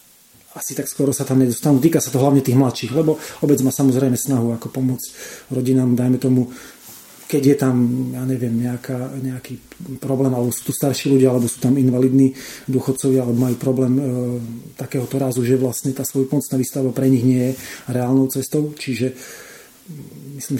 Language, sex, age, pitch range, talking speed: Slovak, male, 30-49, 125-140 Hz, 180 wpm